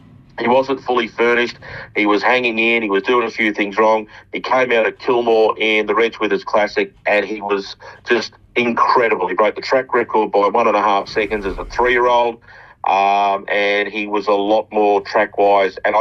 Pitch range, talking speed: 105-120 Hz, 205 wpm